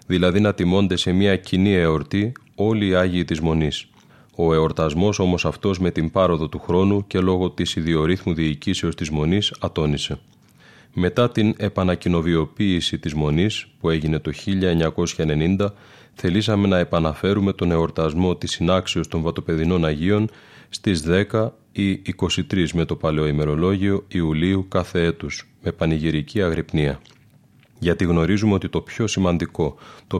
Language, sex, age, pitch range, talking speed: Greek, male, 30-49, 85-100 Hz, 135 wpm